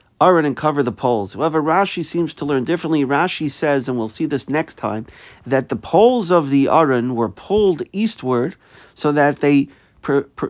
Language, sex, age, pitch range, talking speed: English, male, 50-69, 125-160 Hz, 190 wpm